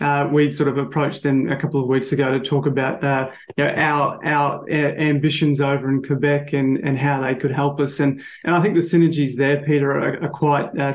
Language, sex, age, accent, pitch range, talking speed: English, male, 20-39, Australian, 140-150 Hz, 230 wpm